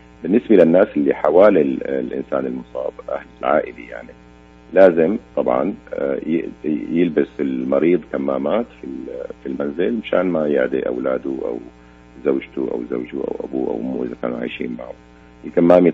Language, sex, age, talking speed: Arabic, male, 50-69, 125 wpm